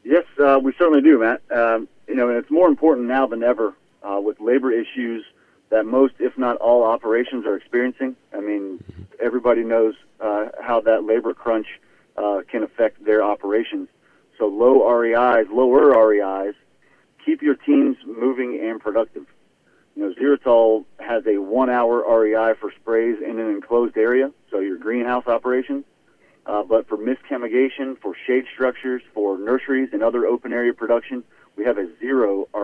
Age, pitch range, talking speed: 40-59, 105-125 Hz, 160 wpm